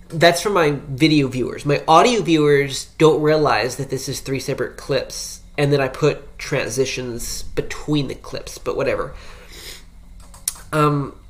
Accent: American